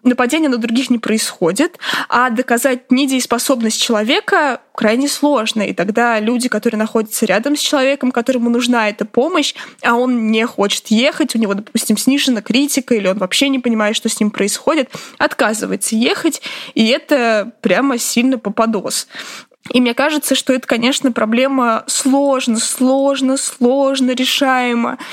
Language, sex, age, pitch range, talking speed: Russian, female, 20-39, 220-265 Hz, 145 wpm